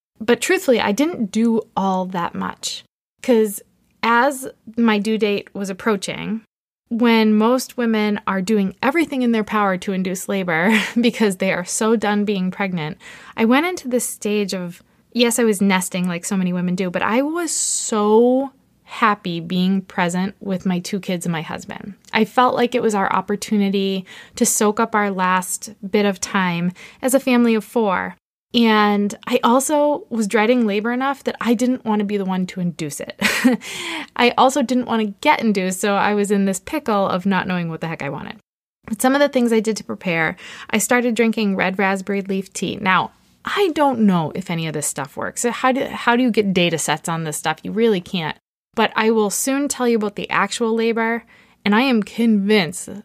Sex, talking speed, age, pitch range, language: female, 200 wpm, 20-39, 190-235 Hz, English